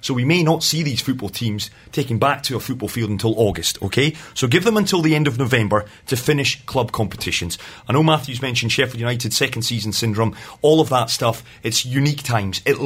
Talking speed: 215 wpm